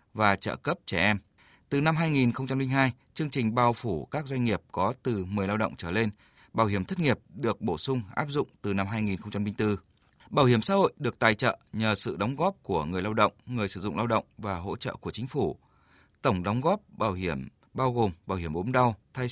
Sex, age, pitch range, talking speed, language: male, 20-39, 100-125 Hz, 225 wpm, Vietnamese